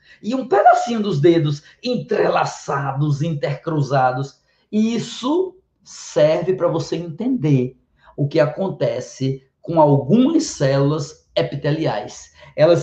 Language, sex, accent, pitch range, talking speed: Portuguese, male, Brazilian, 160-220 Hz, 95 wpm